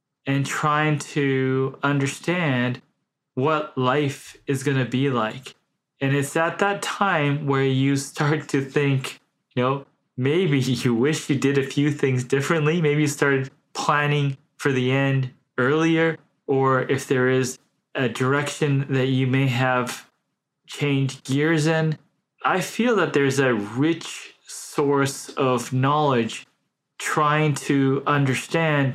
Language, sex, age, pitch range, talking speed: English, male, 20-39, 130-150 Hz, 135 wpm